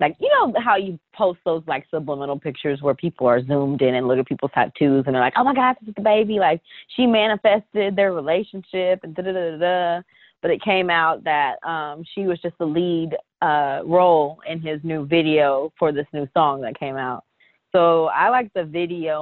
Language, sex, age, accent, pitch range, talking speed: English, female, 20-39, American, 140-170 Hz, 215 wpm